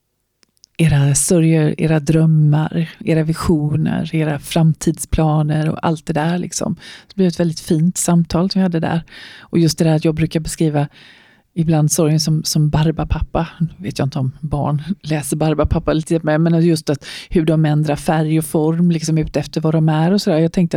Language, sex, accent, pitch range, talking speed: Swedish, female, native, 155-170 Hz, 190 wpm